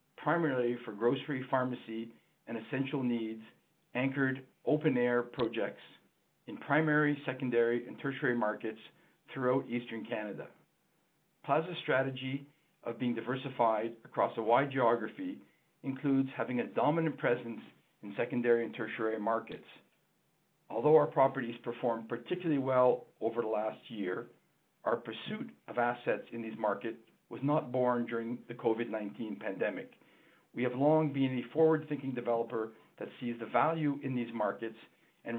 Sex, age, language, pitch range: male, 50-69, English, 115-135 Hz